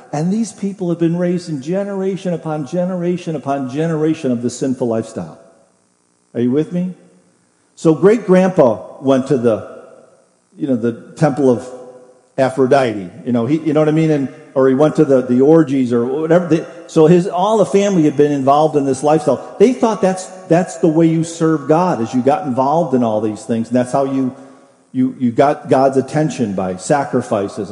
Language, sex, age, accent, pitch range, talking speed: English, male, 50-69, American, 120-160 Hz, 195 wpm